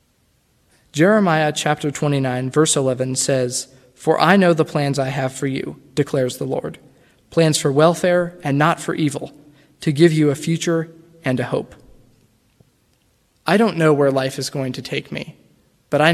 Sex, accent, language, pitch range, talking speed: male, American, English, 130-165 Hz, 165 wpm